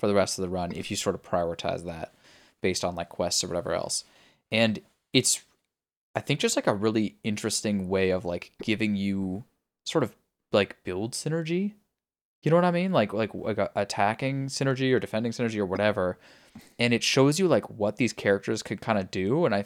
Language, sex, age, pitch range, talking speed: English, male, 10-29, 95-120 Hz, 205 wpm